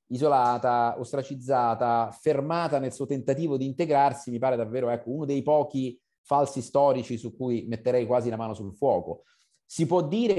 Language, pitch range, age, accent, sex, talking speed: Italian, 120-150 Hz, 30-49, native, male, 160 wpm